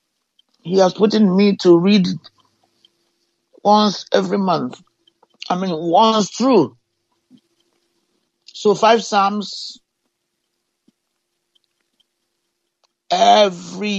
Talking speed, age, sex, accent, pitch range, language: 75 wpm, 60-79, male, Nigerian, 175-225 Hz, English